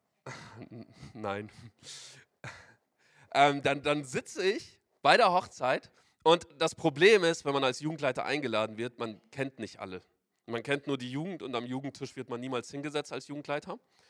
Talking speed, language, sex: 160 wpm, German, male